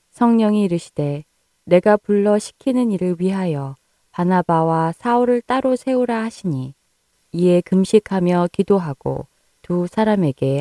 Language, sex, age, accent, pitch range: Korean, female, 20-39, native, 155-210 Hz